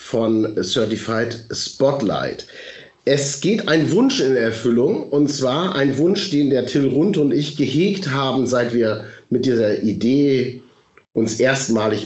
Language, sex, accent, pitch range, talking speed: German, male, German, 115-150 Hz, 140 wpm